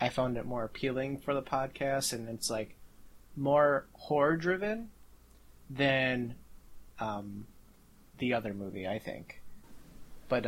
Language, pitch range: English, 110-135 Hz